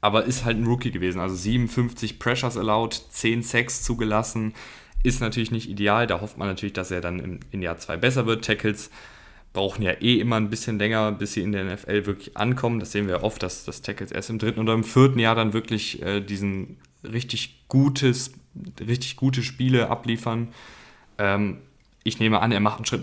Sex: male